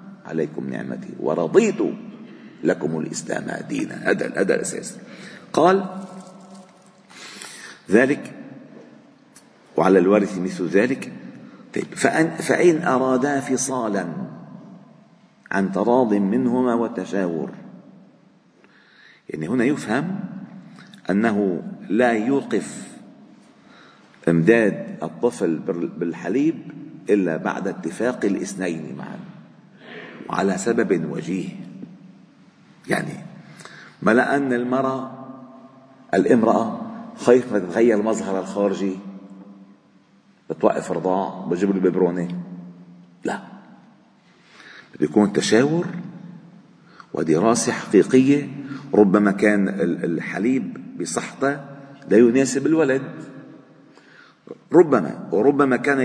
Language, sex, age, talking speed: Arabic, male, 50-69, 70 wpm